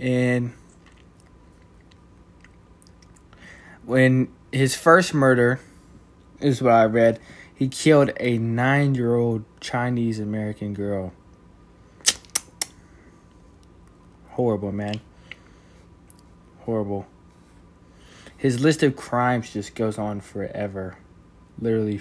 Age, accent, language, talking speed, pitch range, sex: 20-39, American, English, 80 wpm, 90-125 Hz, male